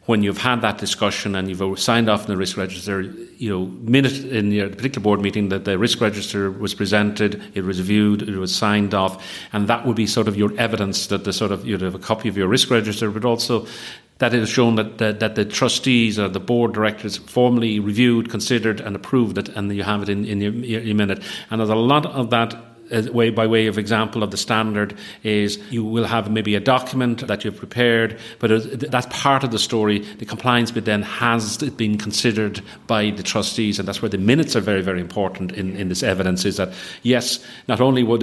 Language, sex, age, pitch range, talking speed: English, male, 40-59, 100-115 Hz, 225 wpm